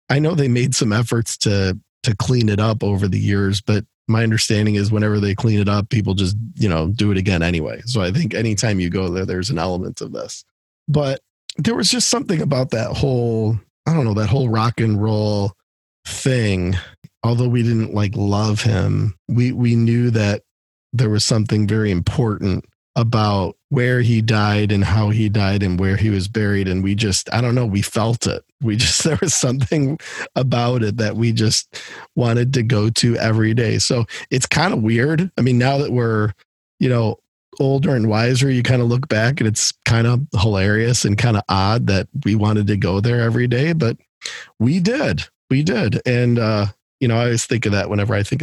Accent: American